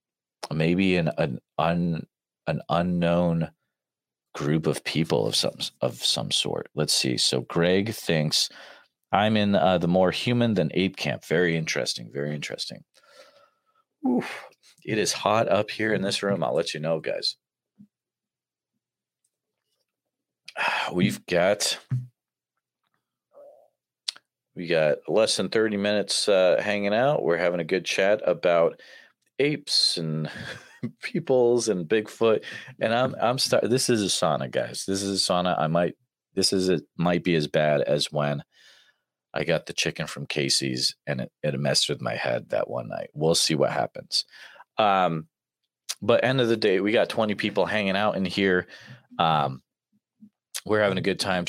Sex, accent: male, American